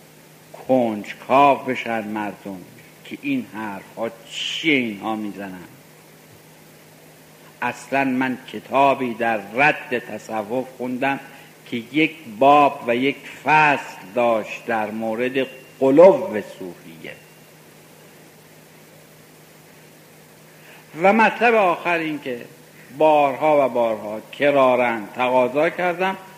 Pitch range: 120-160 Hz